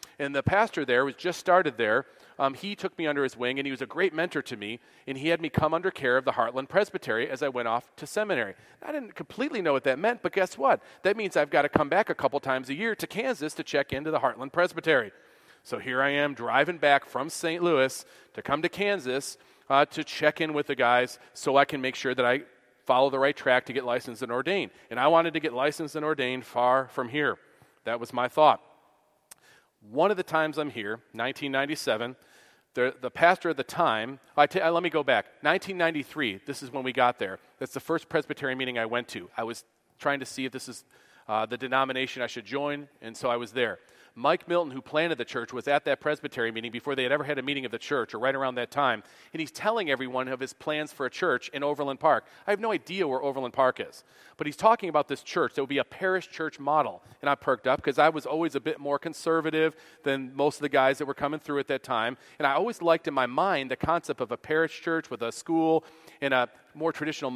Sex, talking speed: male, 250 wpm